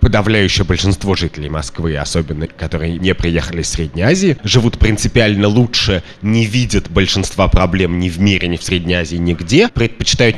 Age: 30-49